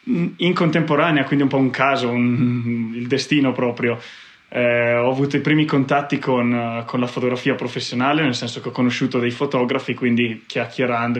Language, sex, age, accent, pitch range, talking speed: Italian, male, 20-39, native, 120-135 Hz, 165 wpm